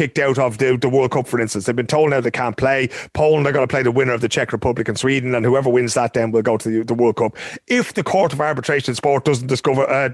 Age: 30-49